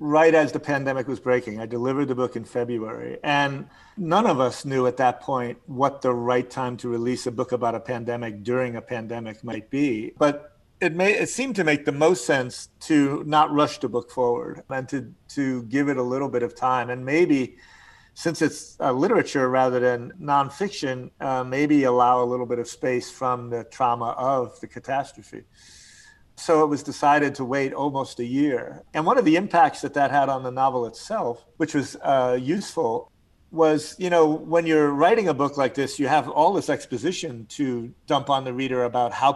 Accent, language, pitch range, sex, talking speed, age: American, English, 125-145 Hz, male, 200 wpm, 50-69